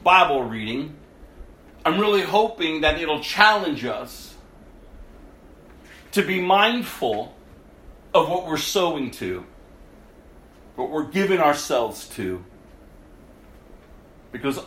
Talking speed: 95 wpm